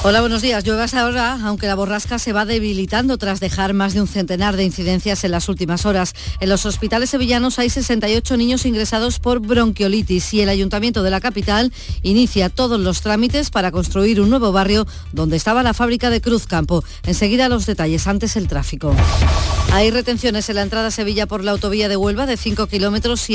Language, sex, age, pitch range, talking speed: Spanish, female, 40-59, 190-230 Hz, 200 wpm